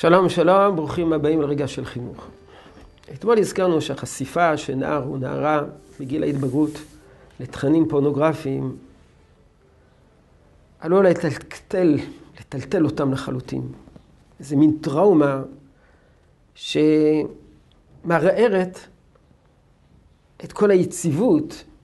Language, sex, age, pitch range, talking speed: Hebrew, male, 50-69, 135-175 Hz, 80 wpm